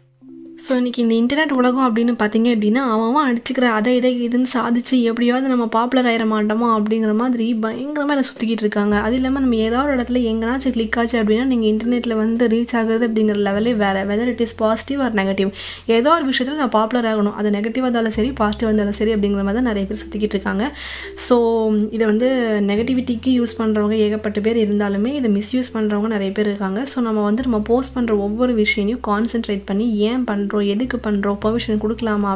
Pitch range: 210-245 Hz